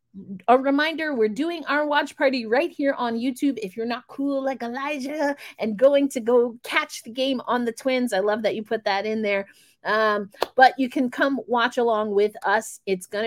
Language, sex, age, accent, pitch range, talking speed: English, female, 30-49, American, 220-280 Hz, 210 wpm